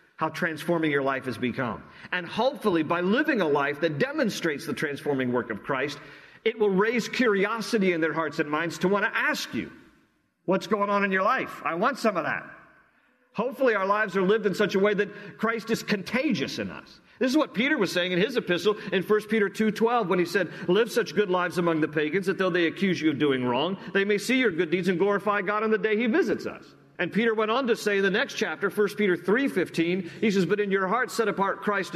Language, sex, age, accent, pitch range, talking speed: English, male, 50-69, American, 165-220 Hz, 240 wpm